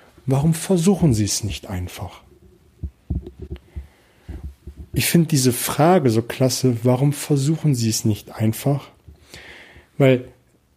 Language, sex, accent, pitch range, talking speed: German, male, German, 125-160 Hz, 105 wpm